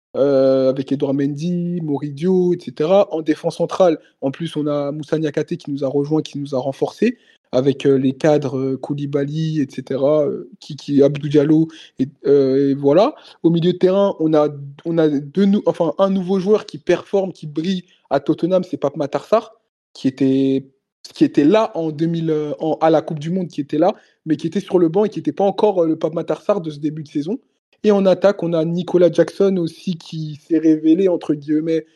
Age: 20-39